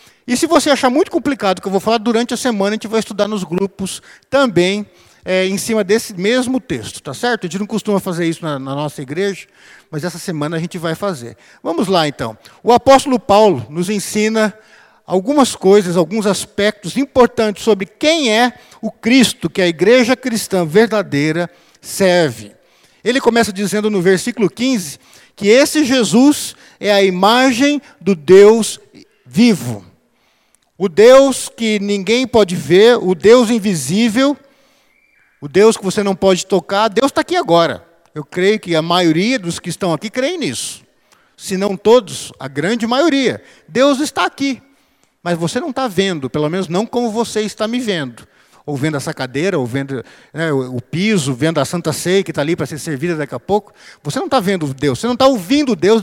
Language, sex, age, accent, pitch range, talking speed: Portuguese, male, 50-69, Brazilian, 175-240 Hz, 180 wpm